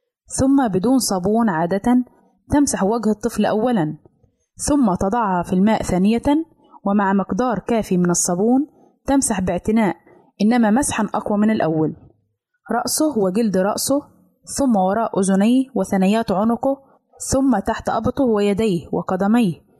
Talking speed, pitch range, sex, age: 115 wpm, 195-250 Hz, female, 20-39